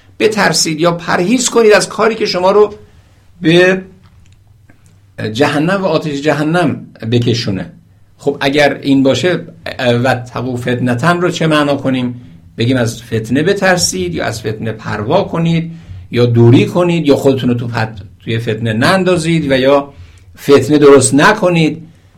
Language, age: Persian, 60-79